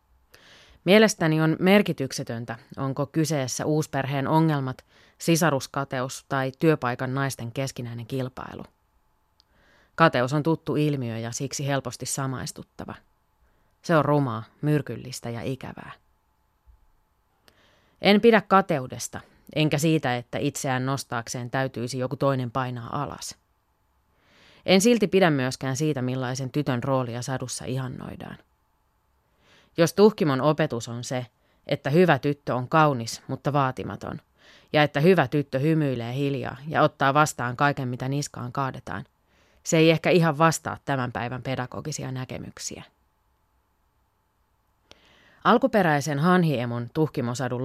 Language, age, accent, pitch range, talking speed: Finnish, 30-49, native, 125-155 Hz, 110 wpm